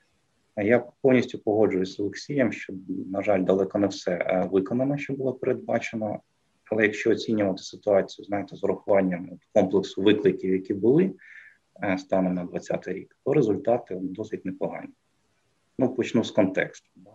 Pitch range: 95-105 Hz